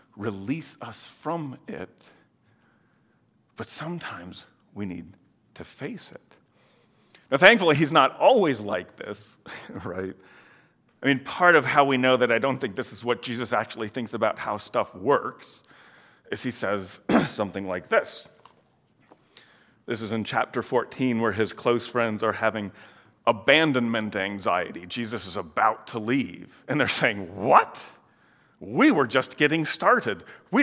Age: 40-59